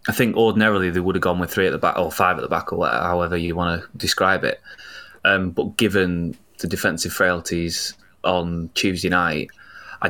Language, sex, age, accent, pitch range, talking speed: English, male, 20-39, British, 85-105 Hz, 210 wpm